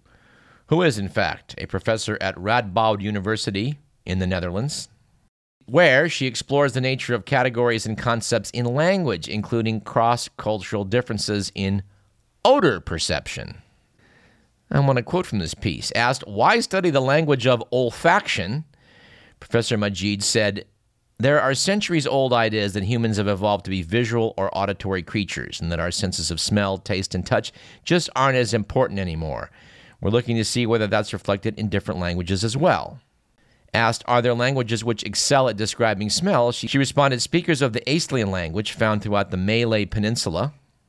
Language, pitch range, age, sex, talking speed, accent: English, 100-130 Hz, 50-69, male, 155 wpm, American